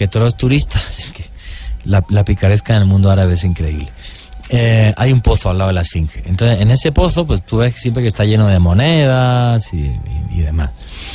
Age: 30-49